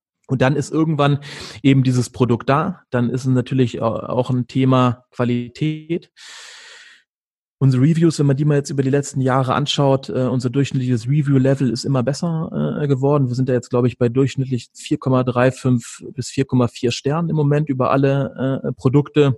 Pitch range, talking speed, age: 120-135 Hz, 170 wpm, 30-49